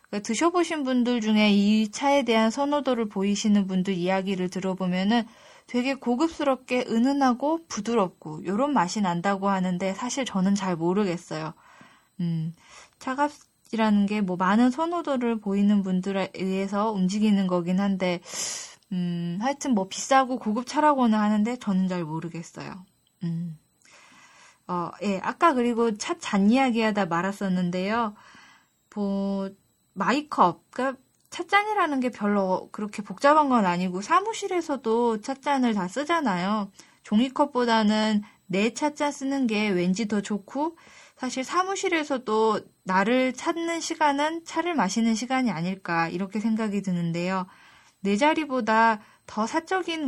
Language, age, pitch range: Korean, 10-29, 190-265 Hz